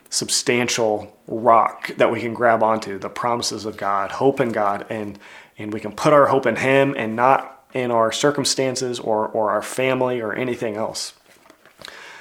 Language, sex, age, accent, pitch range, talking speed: English, male, 30-49, American, 115-135 Hz, 170 wpm